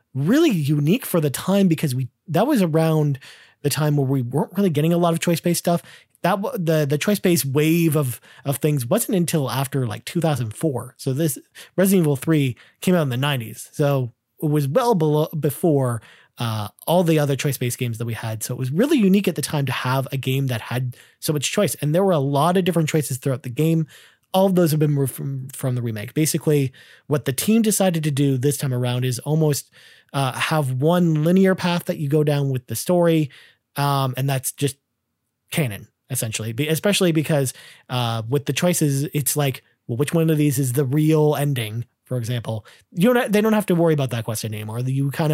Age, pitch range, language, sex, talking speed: 30-49, 125-160 Hz, English, male, 215 wpm